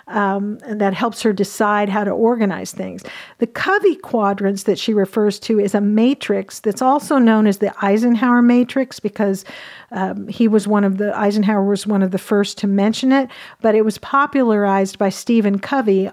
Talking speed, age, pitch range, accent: 185 wpm, 50-69, 200-235 Hz, American